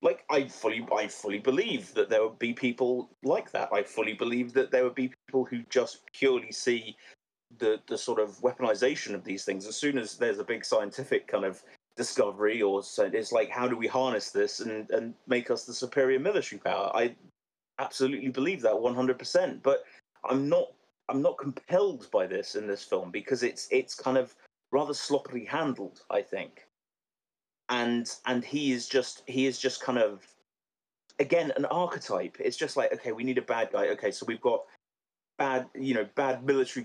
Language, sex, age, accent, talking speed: English, male, 30-49, British, 190 wpm